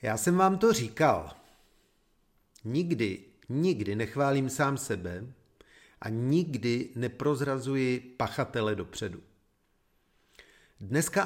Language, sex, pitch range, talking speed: Czech, male, 105-155 Hz, 85 wpm